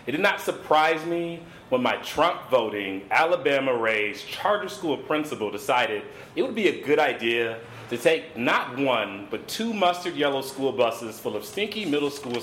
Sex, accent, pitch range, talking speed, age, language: male, American, 135-180 Hz, 170 wpm, 30-49, English